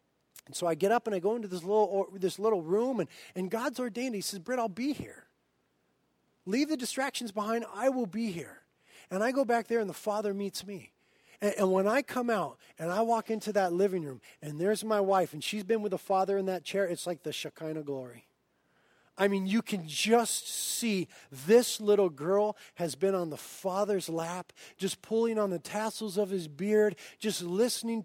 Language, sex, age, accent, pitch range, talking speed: English, male, 40-59, American, 185-230 Hz, 210 wpm